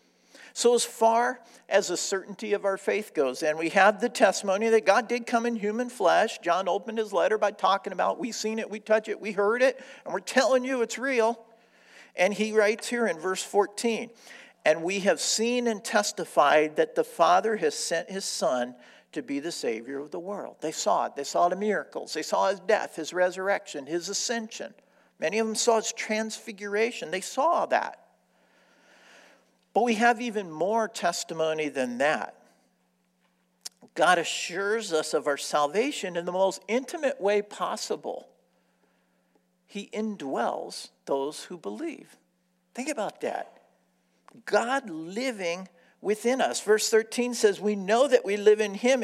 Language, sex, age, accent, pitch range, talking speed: English, male, 50-69, American, 185-235 Hz, 170 wpm